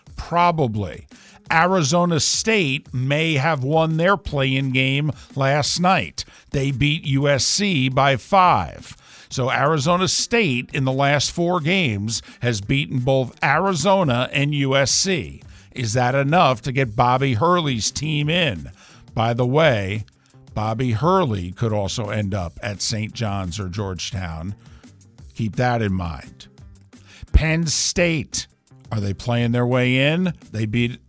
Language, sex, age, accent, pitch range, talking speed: English, male, 50-69, American, 110-145 Hz, 130 wpm